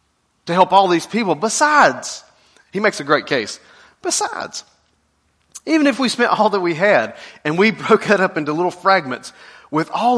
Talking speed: 175 wpm